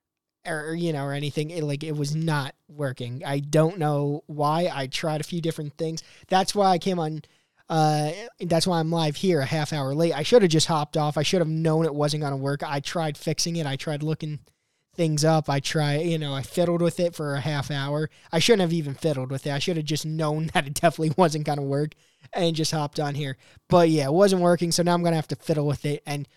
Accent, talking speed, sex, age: American, 255 wpm, male, 20-39